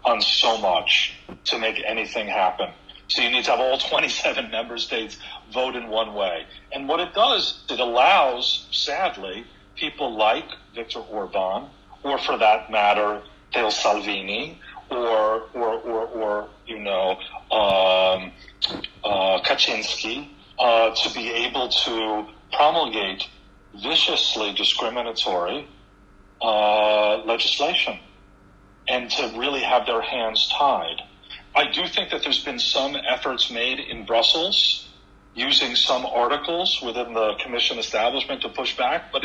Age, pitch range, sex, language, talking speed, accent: 40-59, 100-125 Hz, male, Italian, 130 wpm, American